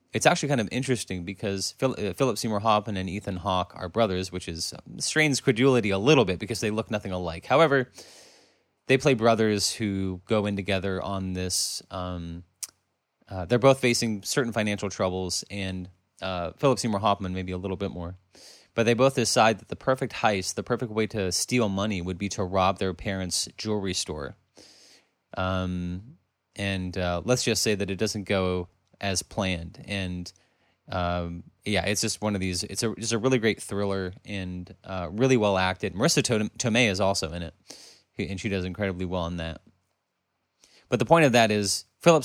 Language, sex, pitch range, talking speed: English, male, 90-110 Hz, 185 wpm